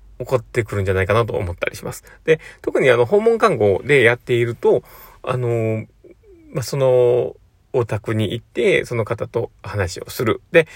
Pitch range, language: 100-145 Hz, Japanese